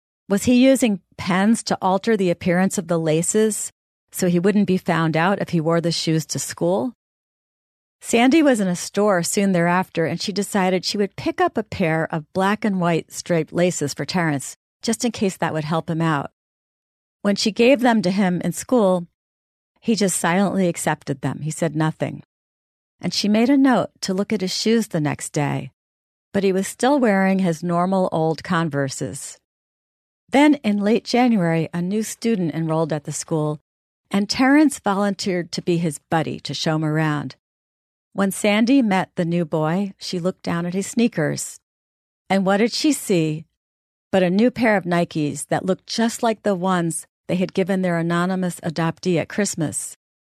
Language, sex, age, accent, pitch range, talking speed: English, female, 40-59, American, 160-205 Hz, 185 wpm